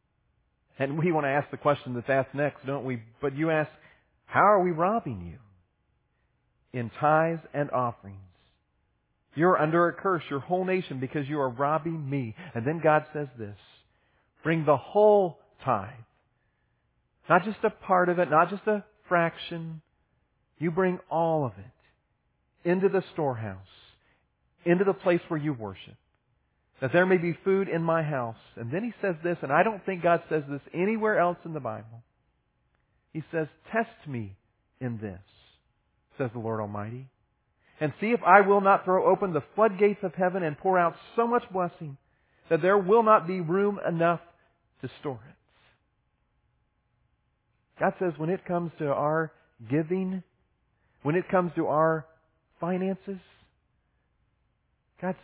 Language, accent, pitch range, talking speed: English, American, 125-180 Hz, 160 wpm